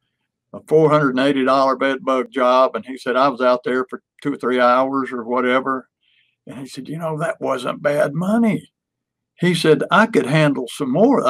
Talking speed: 185 wpm